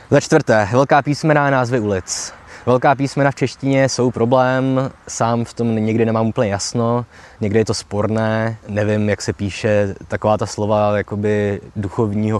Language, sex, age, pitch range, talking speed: Czech, male, 20-39, 100-130 Hz, 160 wpm